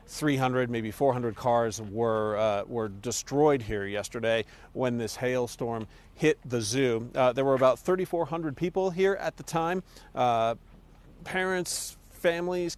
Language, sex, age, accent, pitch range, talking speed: English, male, 40-59, American, 120-150 Hz, 135 wpm